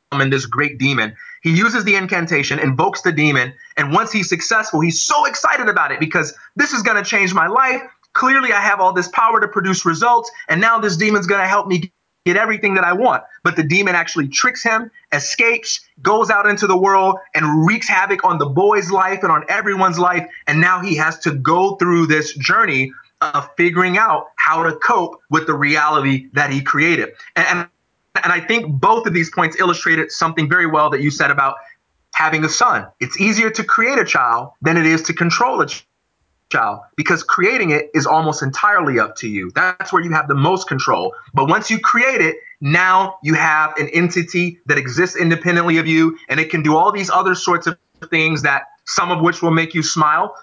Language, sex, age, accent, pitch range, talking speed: English, male, 30-49, American, 155-200 Hz, 210 wpm